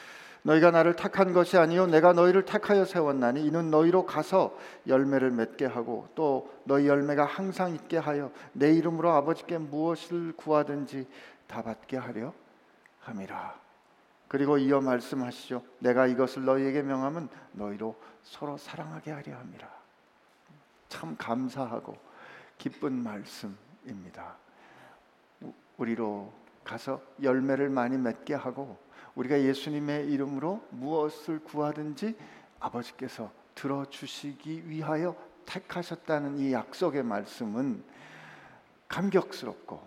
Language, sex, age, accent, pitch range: Korean, male, 50-69, native, 125-165 Hz